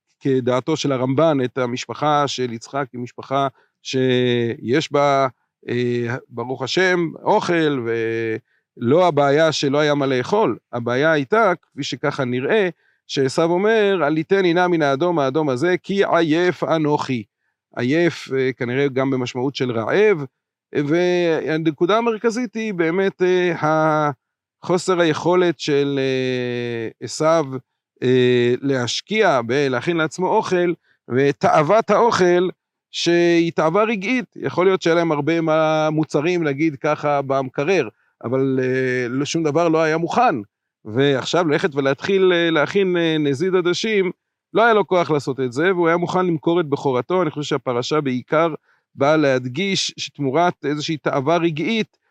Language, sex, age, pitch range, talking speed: Hebrew, male, 40-59, 135-175 Hz, 120 wpm